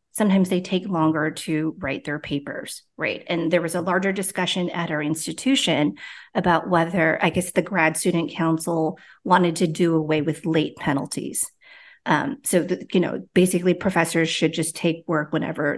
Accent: American